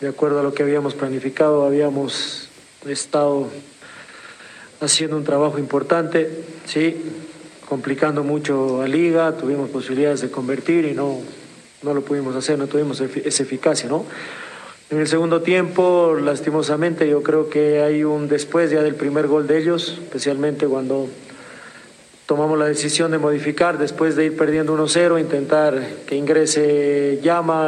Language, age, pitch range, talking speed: Spanish, 40-59, 145-160 Hz, 145 wpm